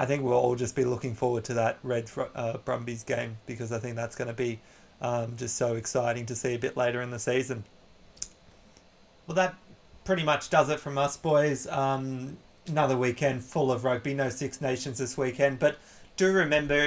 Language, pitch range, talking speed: English, 120-140 Hz, 205 wpm